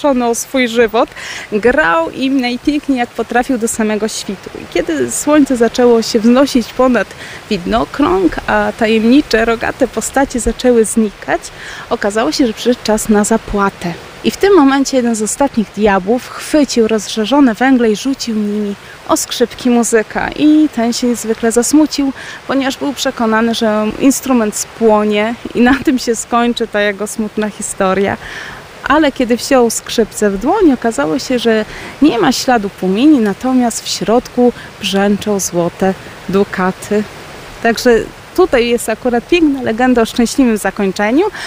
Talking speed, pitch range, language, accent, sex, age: 140 wpm, 215-270 Hz, Polish, native, female, 20-39